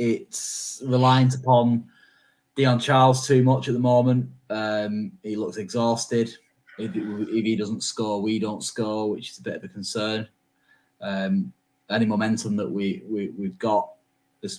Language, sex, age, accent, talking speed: English, male, 10-29, British, 155 wpm